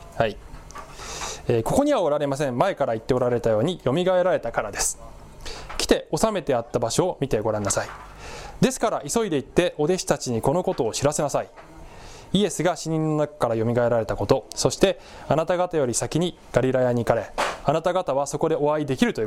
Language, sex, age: Japanese, male, 20-39